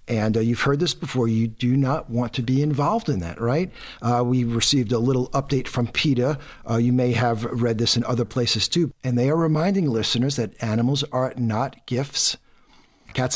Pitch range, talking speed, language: 120-150 Hz, 200 wpm, English